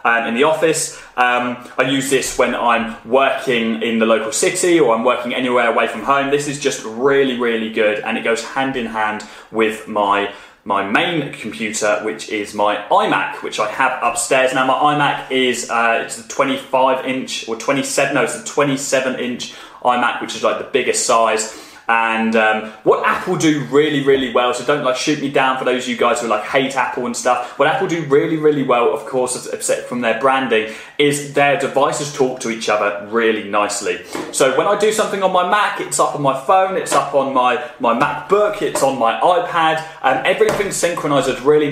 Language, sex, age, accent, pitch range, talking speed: English, male, 20-39, British, 115-150 Hz, 205 wpm